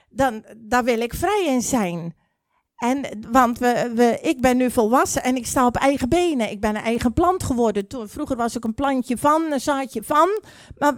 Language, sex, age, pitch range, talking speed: Dutch, female, 40-59, 235-290 Hz, 210 wpm